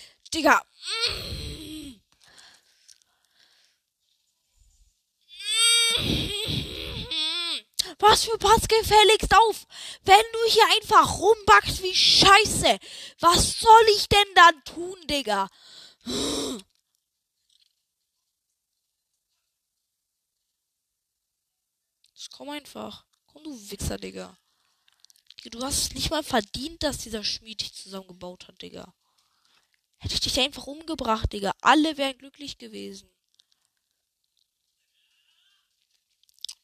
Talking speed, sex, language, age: 80 wpm, female, German, 20-39